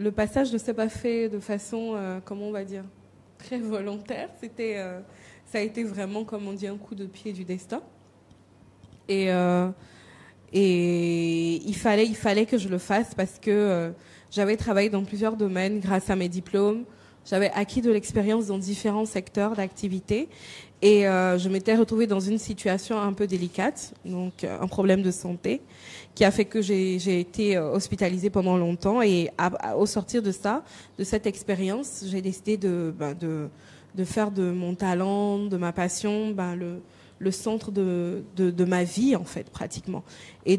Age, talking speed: 20-39, 175 wpm